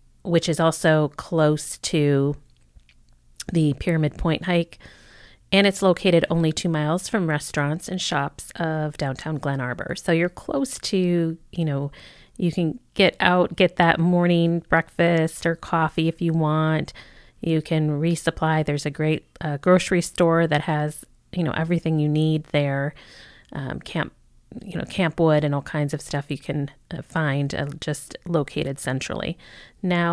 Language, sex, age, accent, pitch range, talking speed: English, female, 30-49, American, 140-170 Hz, 155 wpm